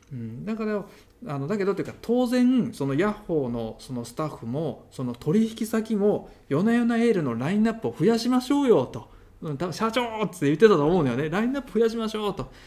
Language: Japanese